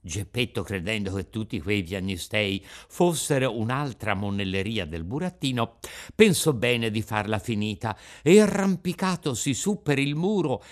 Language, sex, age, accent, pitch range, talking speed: Italian, male, 60-79, native, 125-185 Hz, 125 wpm